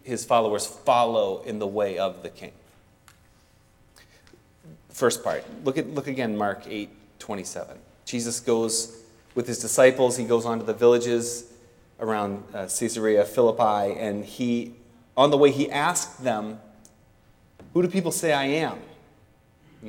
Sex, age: male, 30-49